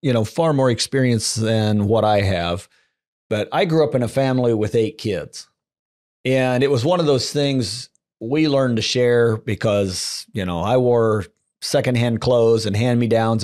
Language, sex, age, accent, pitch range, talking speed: English, male, 40-59, American, 105-130 Hz, 175 wpm